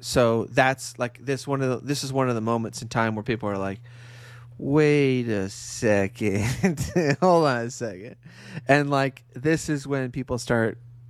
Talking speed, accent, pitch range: 180 wpm, American, 110-130 Hz